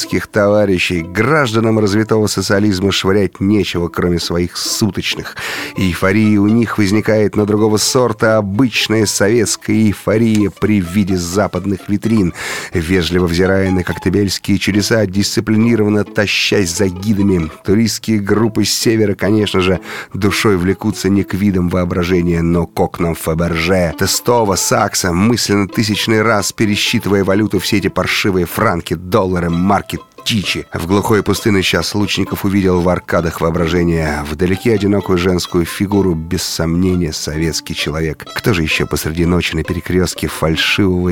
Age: 30-49